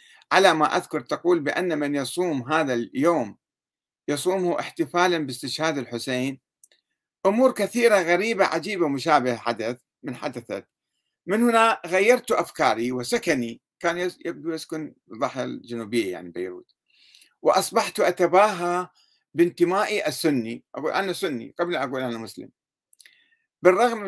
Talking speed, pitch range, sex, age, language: 110 wpm, 135-185 Hz, male, 50-69, Arabic